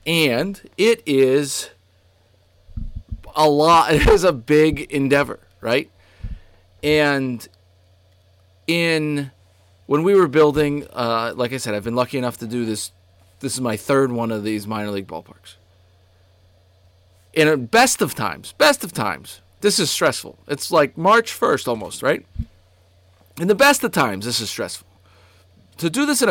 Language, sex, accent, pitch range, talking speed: English, male, American, 95-160 Hz, 155 wpm